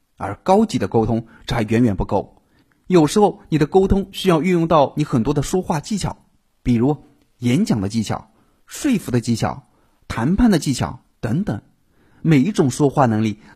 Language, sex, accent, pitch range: Chinese, male, native, 115-190 Hz